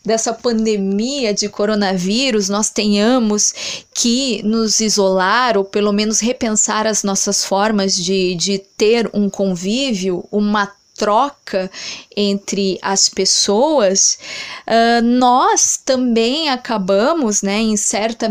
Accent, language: Brazilian, Portuguese